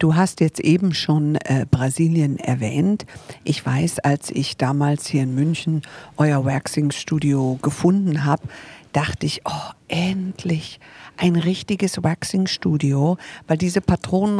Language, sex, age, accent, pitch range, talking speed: German, female, 50-69, German, 150-195 Hz, 125 wpm